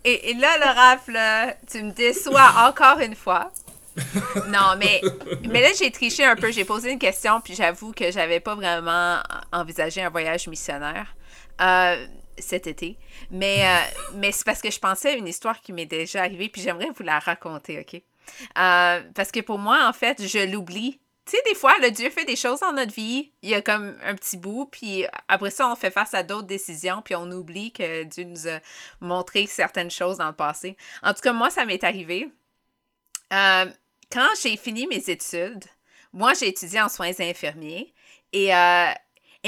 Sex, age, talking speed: female, 30-49, 195 wpm